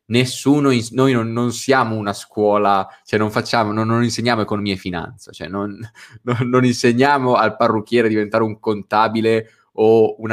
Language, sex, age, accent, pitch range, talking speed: Italian, male, 20-39, native, 105-125 Hz, 170 wpm